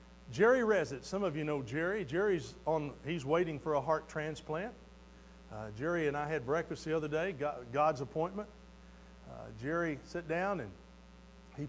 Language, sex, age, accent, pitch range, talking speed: English, male, 50-69, American, 110-180 Hz, 170 wpm